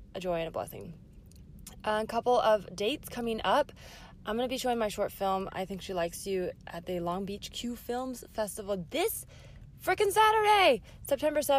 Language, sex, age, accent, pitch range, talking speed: English, female, 20-39, American, 185-245 Hz, 175 wpm